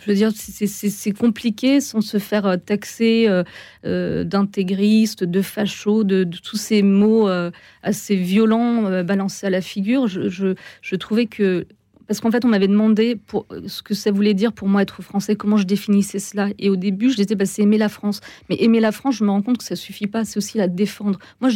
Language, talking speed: French, 230 wpm